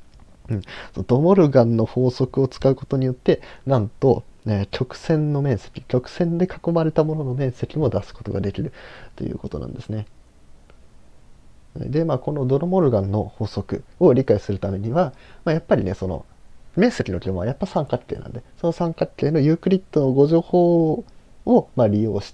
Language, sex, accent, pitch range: Japanese, male, native, 105-150 Hz